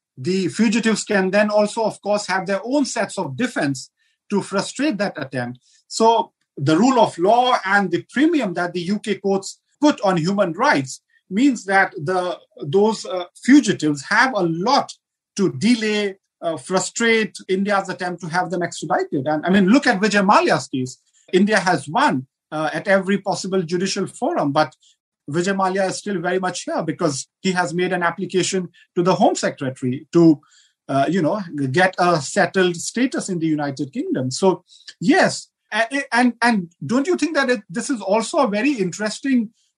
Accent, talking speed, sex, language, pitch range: native, 175 wpm, male, Hindi, 175-215 Hz